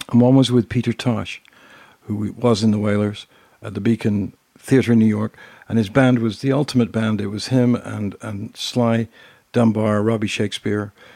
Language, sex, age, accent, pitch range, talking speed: English, male, 60-79, American, 105-135 Hz, 185 wpm